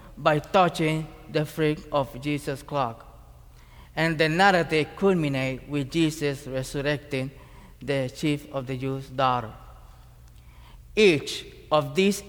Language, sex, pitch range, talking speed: English, male, 135-185 Hz, 110 wpm